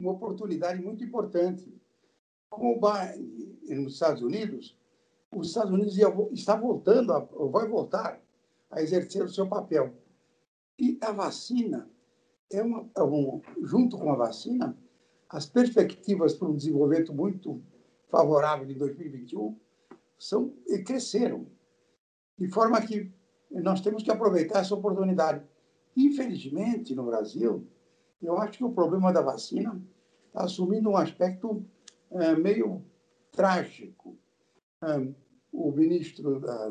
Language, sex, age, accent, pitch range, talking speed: Portuguese, male, 60-79, Brazilian, 150-210 Hz, 120 wpm